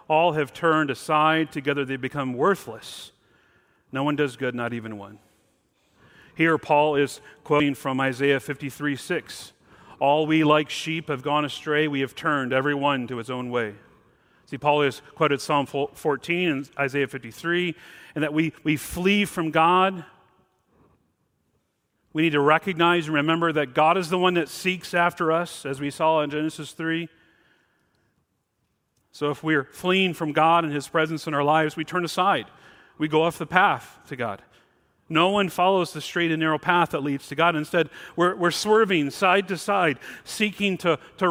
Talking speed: 175 wpm